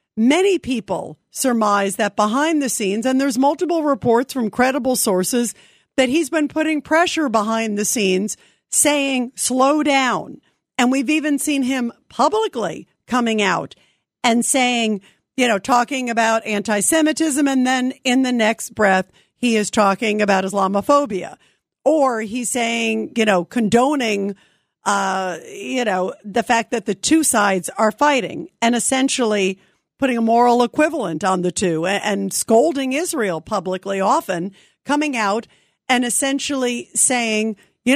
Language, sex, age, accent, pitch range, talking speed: English, female, 50-69, American, 210-270 Hz, 140 wpm